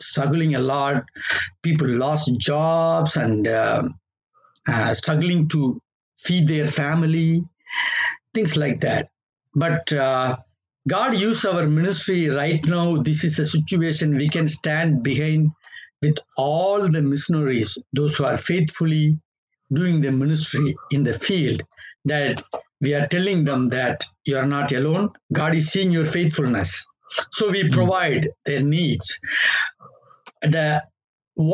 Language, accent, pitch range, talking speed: English, Indian, 145-170 Hz, 130 wpm